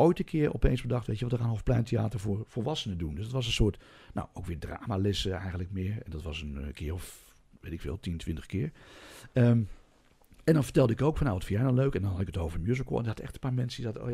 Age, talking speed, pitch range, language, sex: 60-79, 280 wpm, 95-120 Hz, Dutch, male